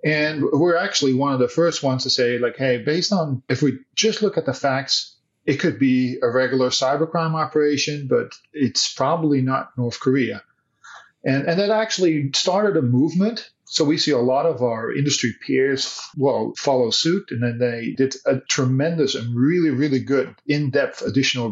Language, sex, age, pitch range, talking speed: English, male, 40-59, 125-150 Hz, 180 wpm